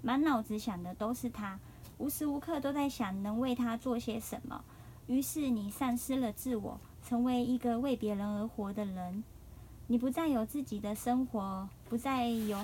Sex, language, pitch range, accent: male, Chinese, 215-260 Hz, American